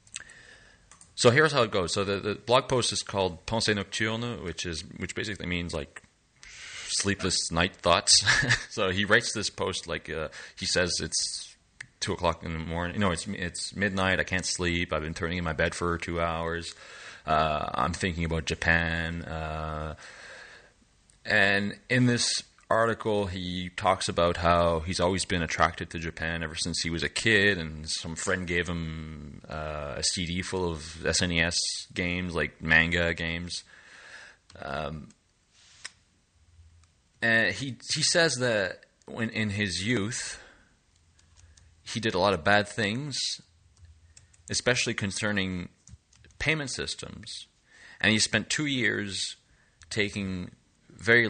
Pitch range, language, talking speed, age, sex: 85-105 Hz, English, 145 wpm, 30-49, male